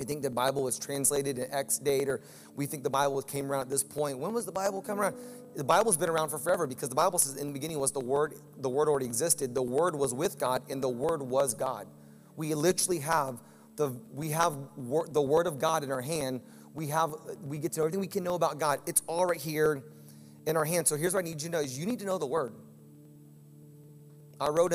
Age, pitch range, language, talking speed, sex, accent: 30-49, 135-180 Hz, English, 255 wpm, male, American